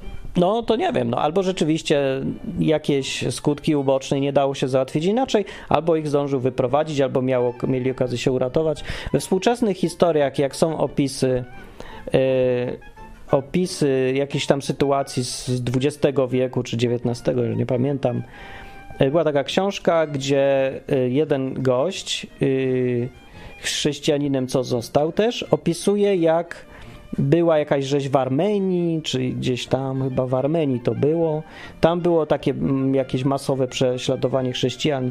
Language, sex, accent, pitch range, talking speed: Polish, male, native, 130-165 Hz, 130 wpm